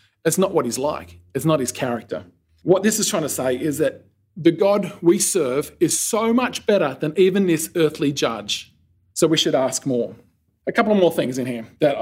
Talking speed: 215 wpm